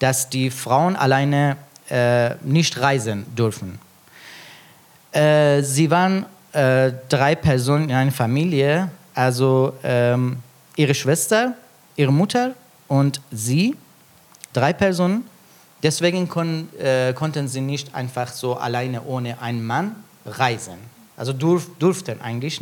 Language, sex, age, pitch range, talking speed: German, male, 40-59, 130-170 Hz, 115 wpm